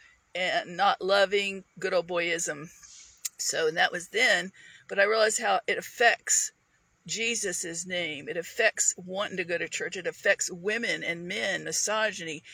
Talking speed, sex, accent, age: 155 wpm, female, American, 50-69